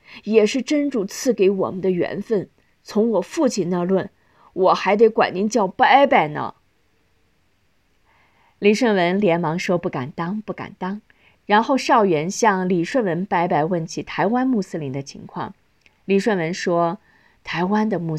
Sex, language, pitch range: female, Chinese, 185-240 Hz